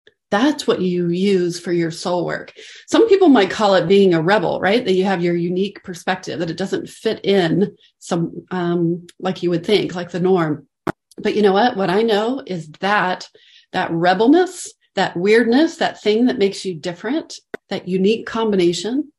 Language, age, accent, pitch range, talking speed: English, 40-59, American, 175-220 Hz, 185 wpm